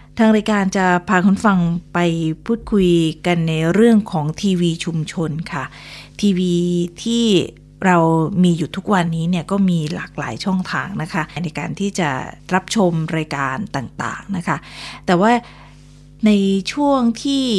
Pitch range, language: 170-200 Hz, Thai